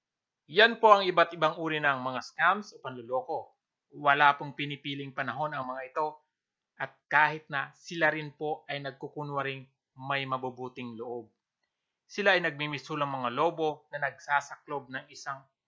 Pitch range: 135-160 Hz